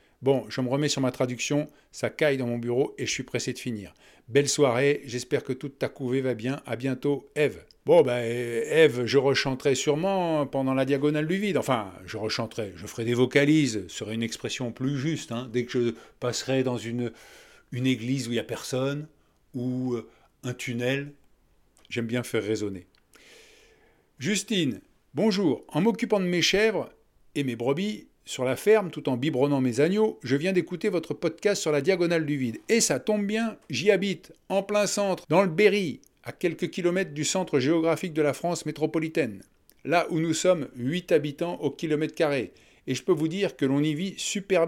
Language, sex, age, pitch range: French, male, 50-69, 130-175 Hz